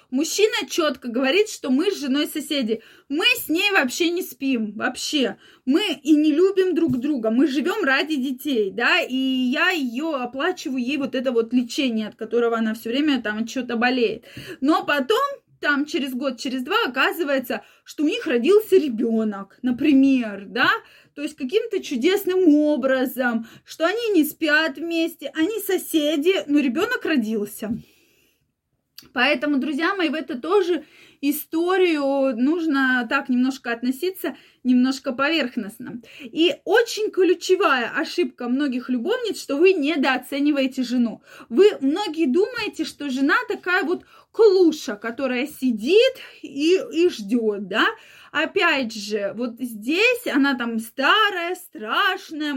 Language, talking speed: Russian, 135 wpm